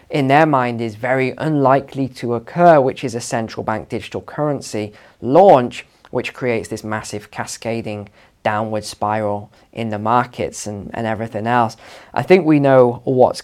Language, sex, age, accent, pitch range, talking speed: English, male, 20-39, British, 115-150 Hz, 155 wpm